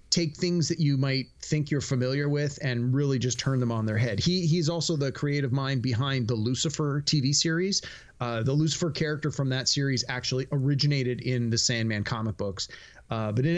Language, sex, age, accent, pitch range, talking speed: English, male, 30-49, American, 120-150 Hz, 200 wpm